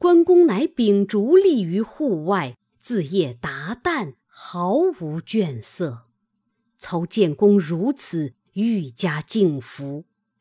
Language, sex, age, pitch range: Chinese, female, 50-69, 160-230 Hz